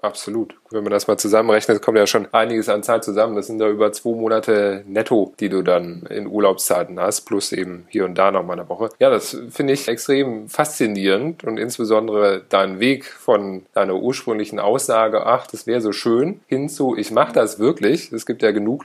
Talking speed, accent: 205 wpm, German